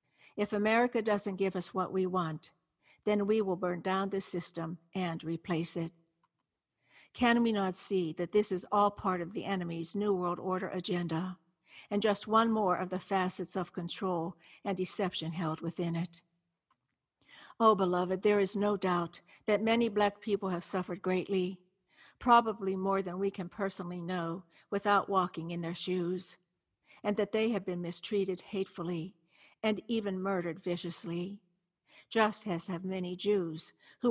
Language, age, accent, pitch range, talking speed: English, 60-79, American, 175-205 Hz, 160 wpm